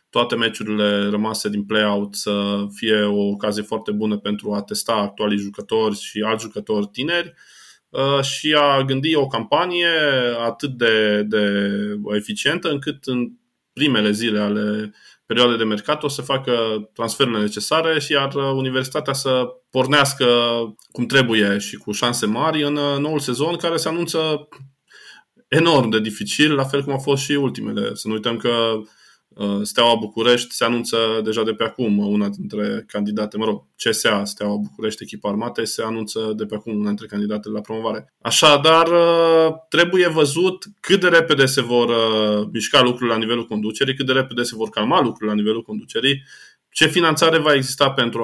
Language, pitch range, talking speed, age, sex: Romanian, 105-145 Hz, 160 wpm, 20-39, male